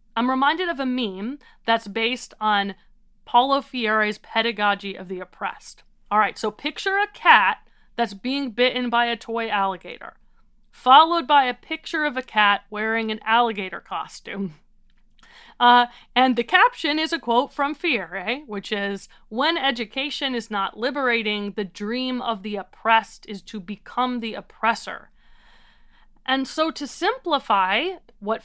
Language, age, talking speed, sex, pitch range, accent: English, 30-49, 145 wpm, female, 210-285 Hz, American